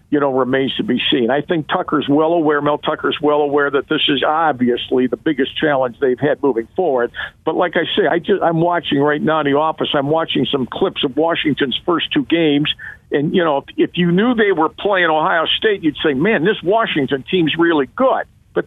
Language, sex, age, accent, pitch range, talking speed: English, male, 50-69, American, 155-210 Hz, 220 wpm